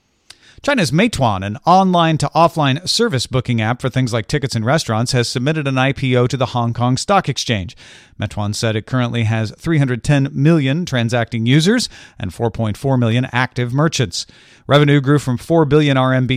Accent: American